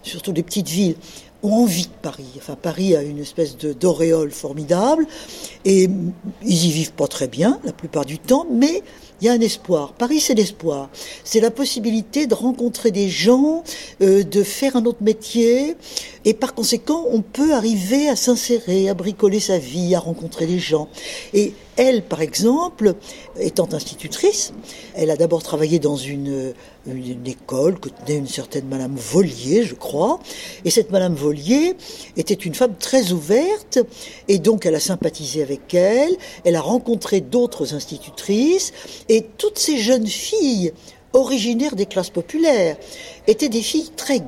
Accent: French